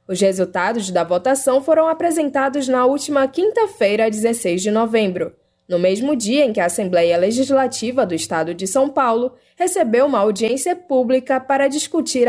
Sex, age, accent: female, 10-29, Brazilian